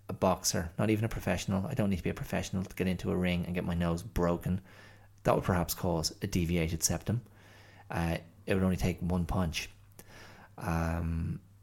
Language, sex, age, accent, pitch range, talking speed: English, male, 30-49, Irish, 90-100 Hz, 190 wpm